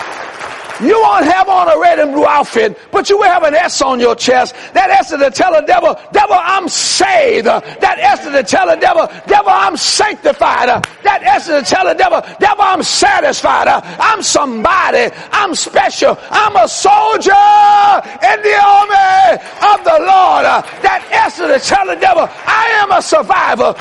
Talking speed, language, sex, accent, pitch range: 180 wpm, English, male, American, 345-420 Hz